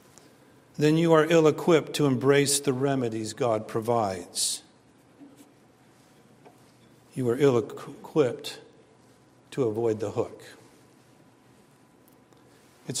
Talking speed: 85 wpm